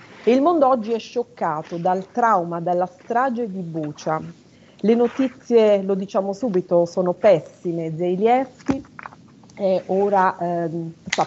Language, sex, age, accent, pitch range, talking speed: Italian, female, 40-59, native, 165-230 Hz, 115 wpm